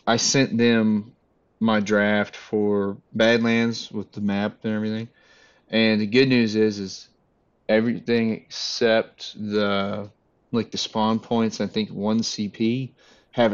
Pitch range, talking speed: 105-115 Hz, 135 wpm